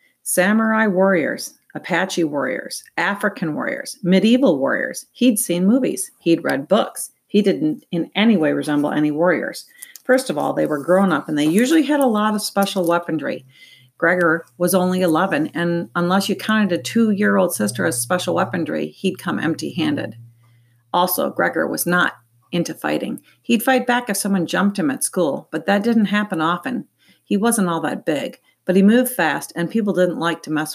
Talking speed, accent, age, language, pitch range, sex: 175 wpm, American, 50-69, English, 165-235 Hz, female